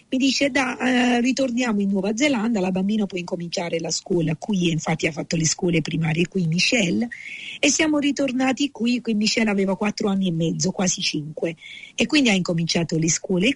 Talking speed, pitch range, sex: 180 wpm, 175-240 Hz, female